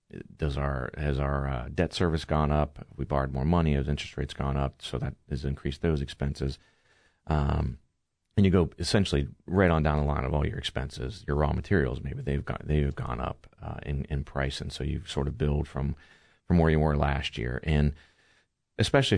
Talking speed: 205 wpm